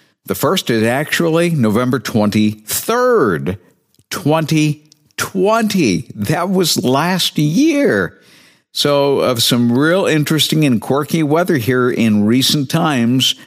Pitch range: 100-140 Hz